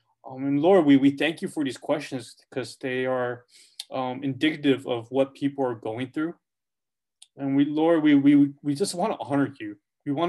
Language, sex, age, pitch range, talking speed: English, male, 20-39, 130-150 Hz, 200 wpm